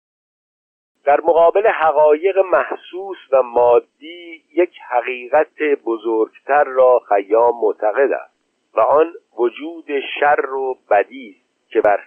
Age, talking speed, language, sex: 50-69, 110 wpm, Persian, male